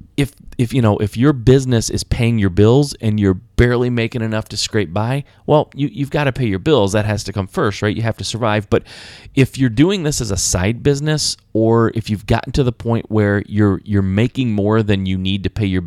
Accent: American